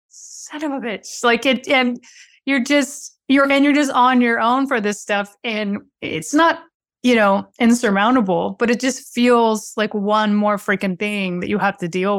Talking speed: 190 wpm